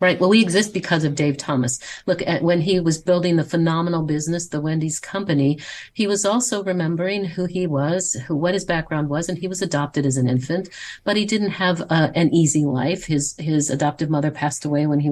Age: 50-69